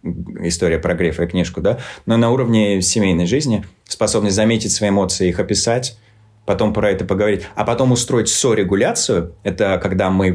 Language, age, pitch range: Russian, 30-49, 95-115 Hz